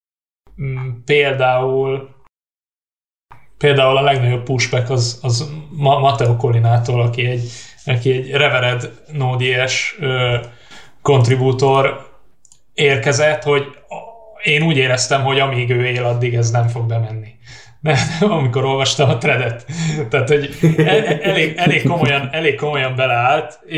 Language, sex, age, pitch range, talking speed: Hungarian, male, 20-39, 125-150 Hz, 110 wpm